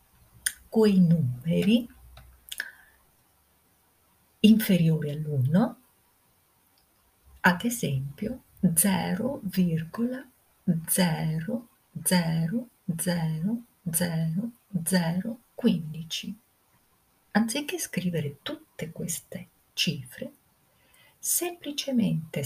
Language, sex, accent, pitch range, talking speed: Italian, female, native, 160-245 Hz, 45 wpm